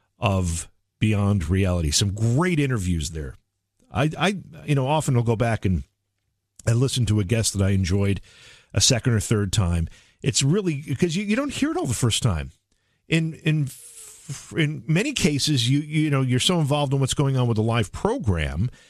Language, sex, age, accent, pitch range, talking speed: English, male, 50-69, American, 100-155 Hz, 190 wpm